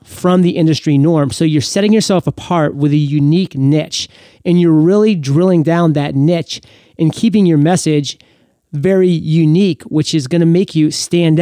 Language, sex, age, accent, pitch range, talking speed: English, male, 30-49, American, 140-175 Hz, 175 wpm